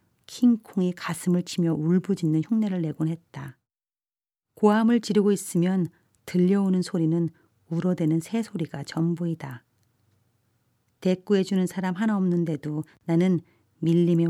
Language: Korean